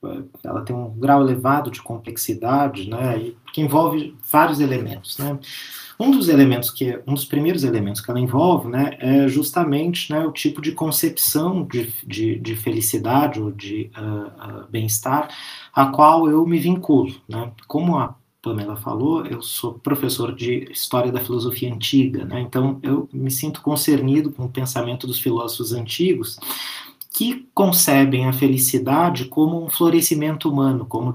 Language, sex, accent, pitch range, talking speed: Portuguese, male, Brazilian, 125-155 Hz, 155 wpm